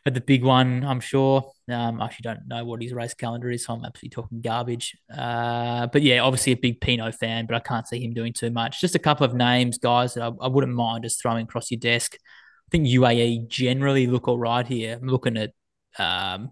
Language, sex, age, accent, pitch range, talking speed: English, male, 20-39, Australian, 115-125 Hz, 235 wpm